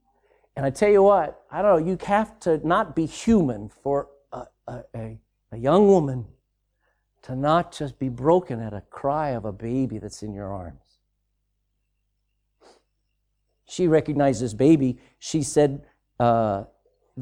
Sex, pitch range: male, 140-200 Hz